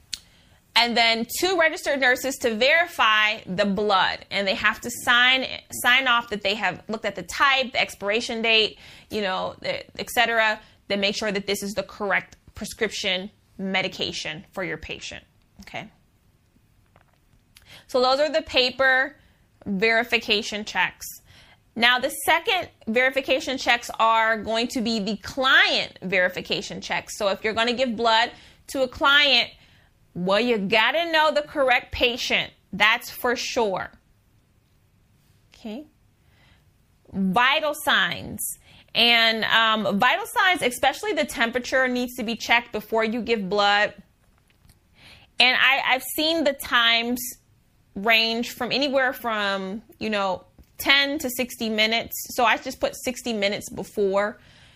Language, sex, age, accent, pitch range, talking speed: English, female, 20-39, American, 205-255 Hz, 135 wpm